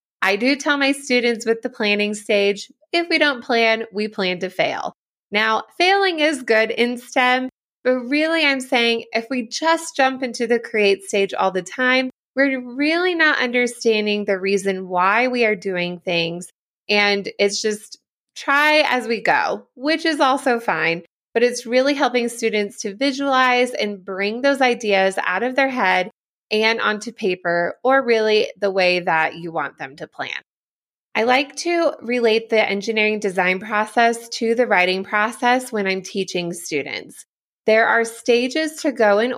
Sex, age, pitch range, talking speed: female, 20-39, 200-255 Hz, 170 wpm